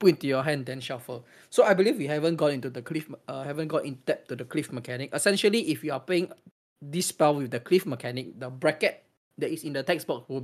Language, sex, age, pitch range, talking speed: English, male, 20-39, 130-165 Hz, 255 wpm